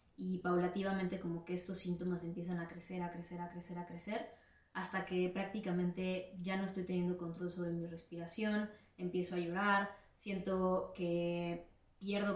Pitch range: 175-195 Hz